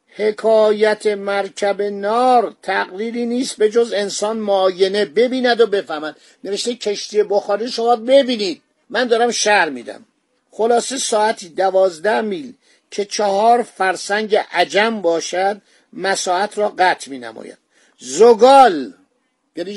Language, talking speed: Persian, 110 wpm